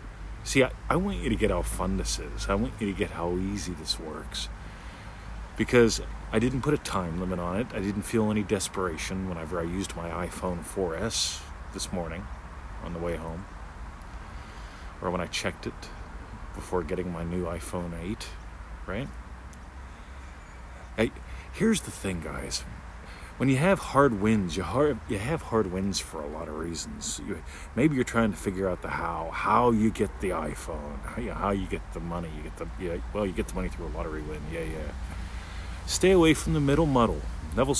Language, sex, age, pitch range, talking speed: English, male, 40-59, 80-105 Hz, 190 wpm